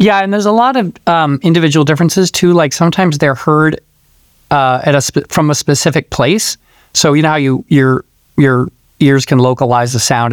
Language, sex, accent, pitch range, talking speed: English, male, American, 125-155 Hz, 200 wpm